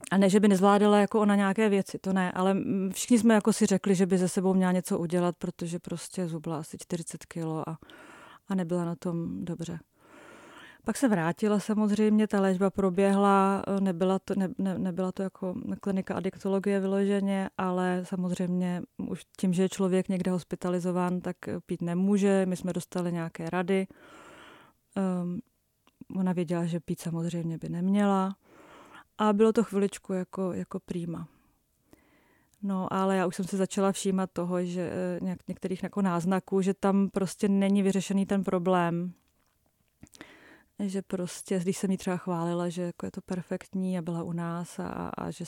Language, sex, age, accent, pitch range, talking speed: Czech, female, 30-49, native, 175-195 Hz, 160 wpm